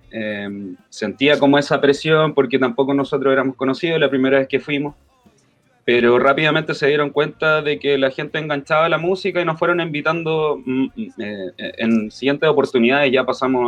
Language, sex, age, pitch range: Spanish, male, 20-39, 115-145 Hz